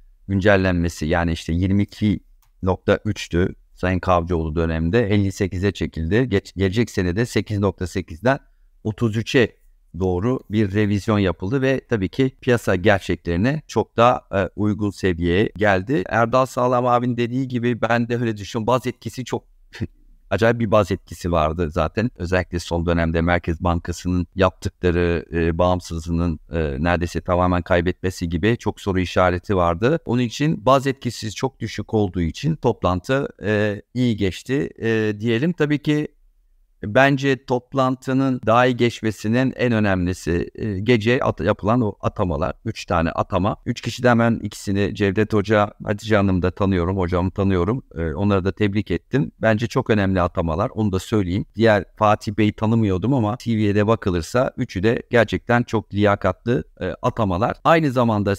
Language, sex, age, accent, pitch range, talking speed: Turkish, male, 50-69, native, 90-120 Hz, 140 wpm